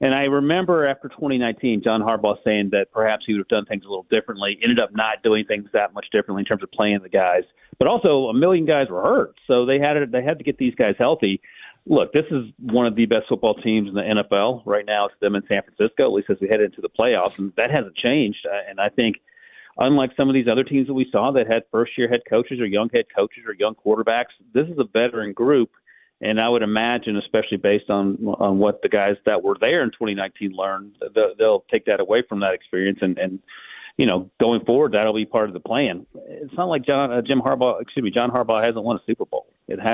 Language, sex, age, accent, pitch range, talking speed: English, male, 40-59, American, 100-140 Hz, 245 wpm